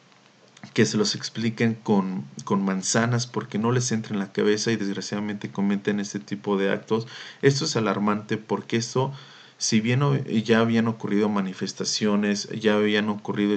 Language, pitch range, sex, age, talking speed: Spanish, 100-115 Hz, male, 40-59, 155 wpm